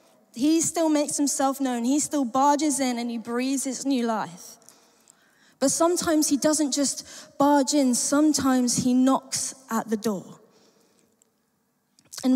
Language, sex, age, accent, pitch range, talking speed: English, female, 20-39, British, 230-275 Hz, 140 wpm